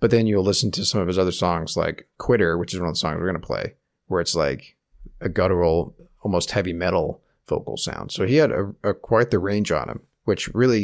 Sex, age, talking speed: male, 30-49, 245 wpm